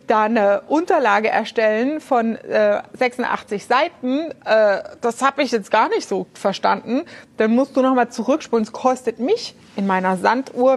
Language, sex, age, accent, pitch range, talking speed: German, female, 30-49, German, 215-270 Hz, 150 wpm